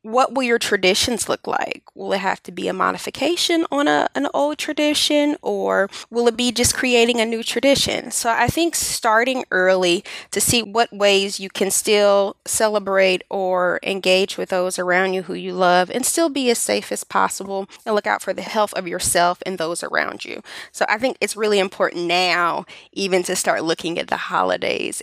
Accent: American